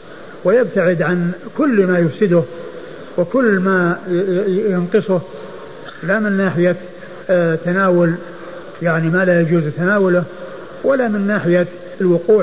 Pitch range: 175-215 Hz